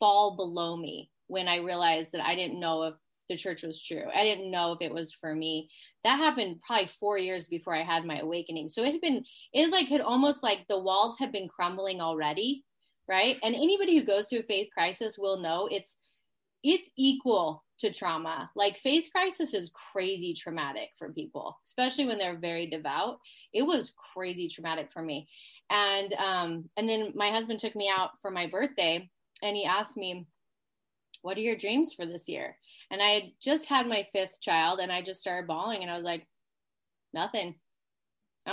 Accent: American